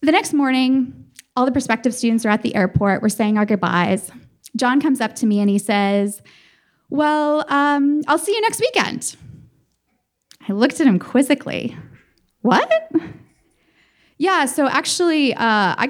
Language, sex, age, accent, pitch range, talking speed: English, female, 20-39, American, 220-300 Hz, 155 wpm